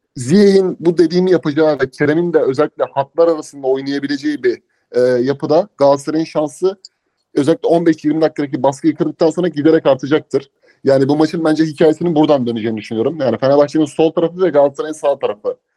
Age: 30-49